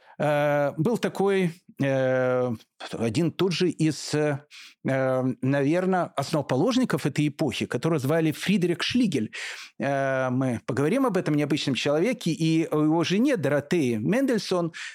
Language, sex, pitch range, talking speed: Russian, male, 140-190 Hz, 105 wpm